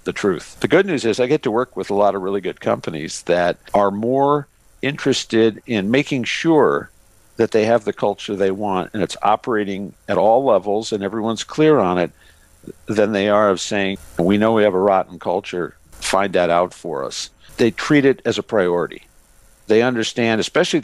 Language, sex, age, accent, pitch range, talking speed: English, male, 50-69, American, 100-120 Hz, 195 wpm